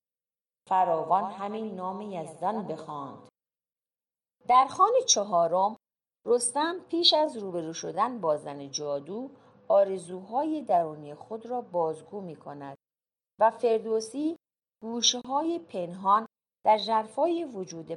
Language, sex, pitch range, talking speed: Persian, female, 170-245 Hz, 95 wpm